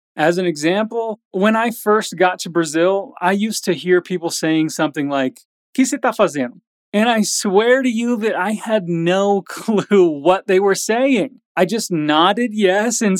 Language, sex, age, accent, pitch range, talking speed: Portuguese, male, 30-49, American, 180-240 Hz, 180 wpm